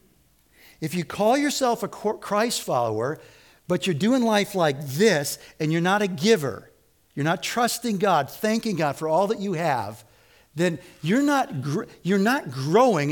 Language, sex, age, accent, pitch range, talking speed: English, male, 50-69, American, 150-220 Hz, 165 wpm